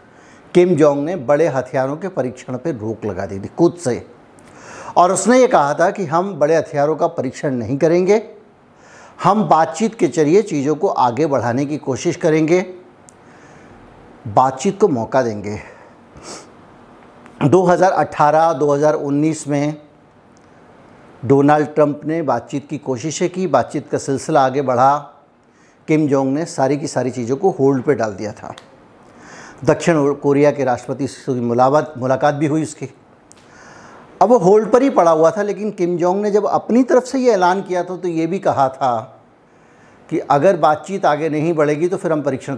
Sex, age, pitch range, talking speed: male, 60-79, 135-175 Hz, 160 wpm